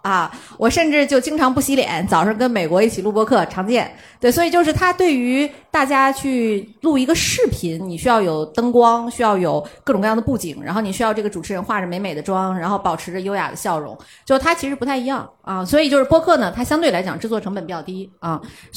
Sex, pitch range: female, 195-260 Hz